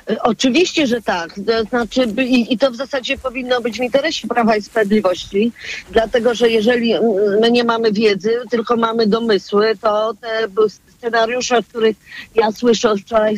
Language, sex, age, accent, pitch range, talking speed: Polish, female, 40-59, native, 210-250 Hz, 165 wpm